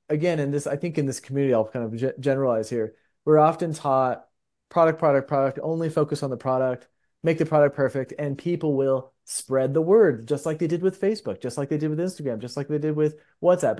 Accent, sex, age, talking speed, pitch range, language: American, male, 30-49, 225 wpm, 125-160 Hz, English